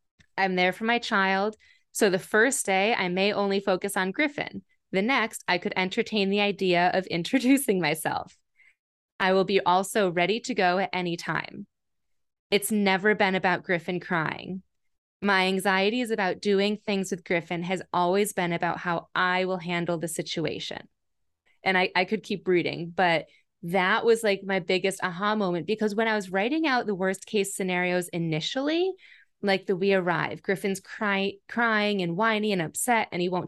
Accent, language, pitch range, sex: American, English, 180-220 Hz, female